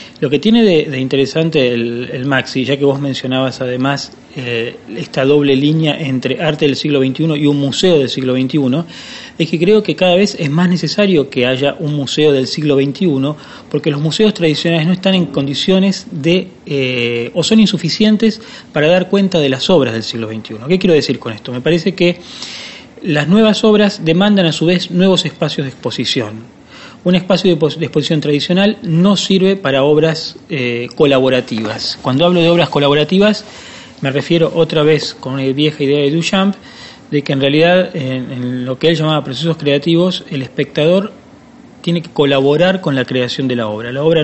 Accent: Argentinian